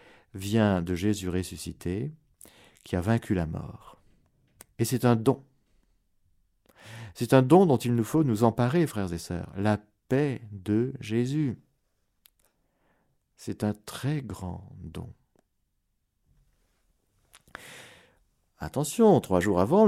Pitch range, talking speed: 85-120 Hz, 115 wpm